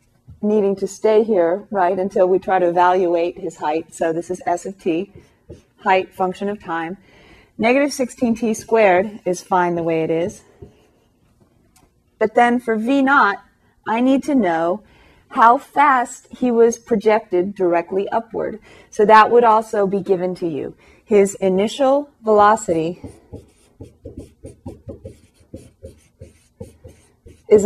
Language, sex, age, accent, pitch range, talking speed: English, female, 30-49, American, 180-220 Hz, 130 wpm